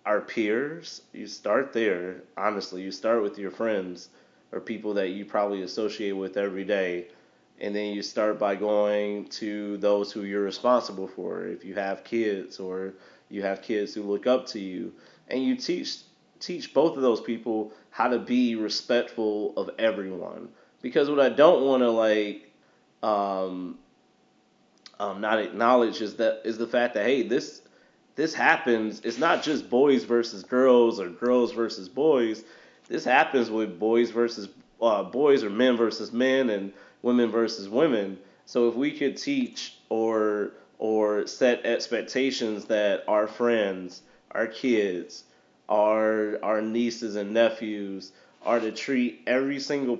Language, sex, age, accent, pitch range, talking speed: English, male, 30-49, American, 100-120 Hz, 155 wpm